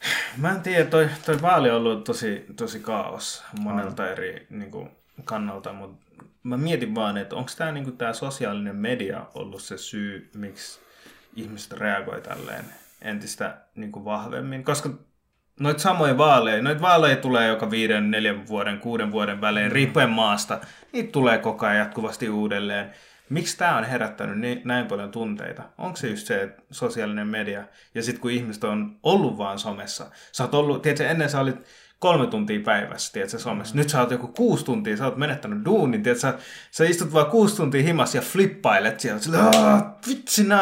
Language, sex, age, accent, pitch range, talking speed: English, male, 20-39, Finnish, 110-165 Hz, 155 wpm